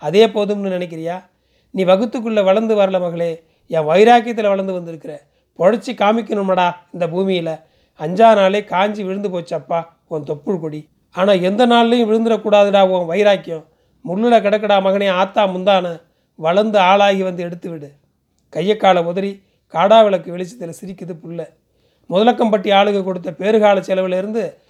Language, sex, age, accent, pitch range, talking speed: Tamil, male, 30-49, native, 180-210 Hz, 125 wpm